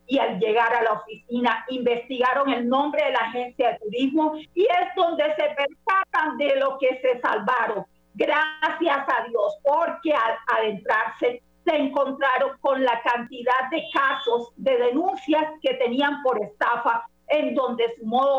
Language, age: Spanish, 50-69